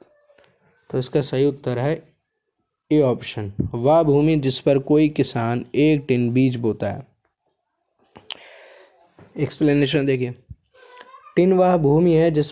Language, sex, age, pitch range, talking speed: Hindi, male, 20-39, 130-160 Hz, 120 wpm